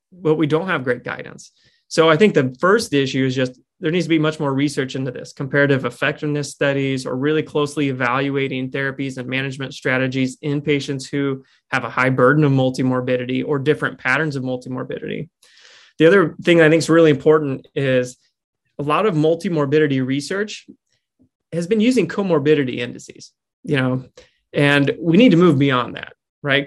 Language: English